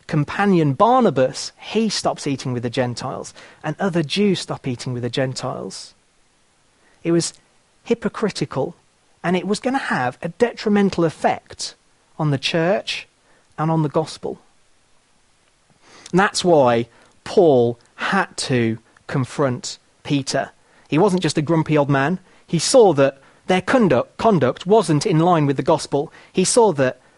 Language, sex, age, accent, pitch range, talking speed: English, male, 40-59, British, 130-185 Hz, 140 wpm